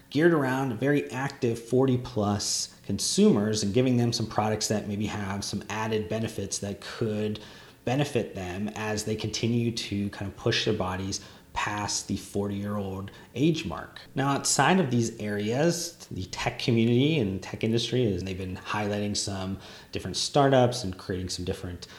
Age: 30-49